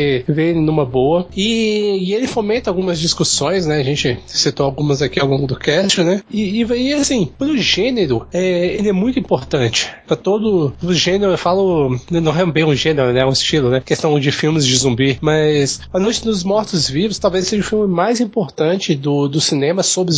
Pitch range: 140-190 Hz